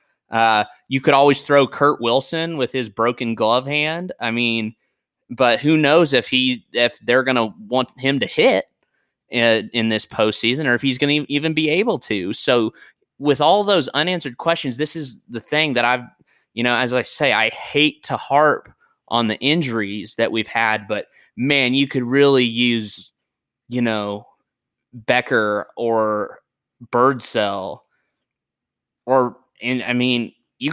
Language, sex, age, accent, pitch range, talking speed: English, male, 20-39, American, 115-145 Hz, 160 wpm